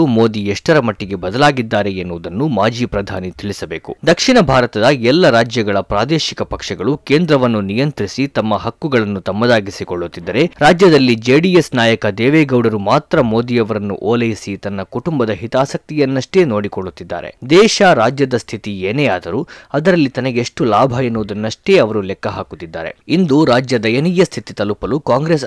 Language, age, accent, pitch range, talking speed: Kannada, 20-39, native, 105-150 Hz, 110 wpm